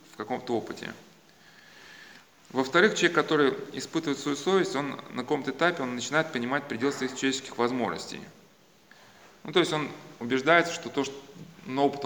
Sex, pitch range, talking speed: male, 120-150 Hz, 150 wpm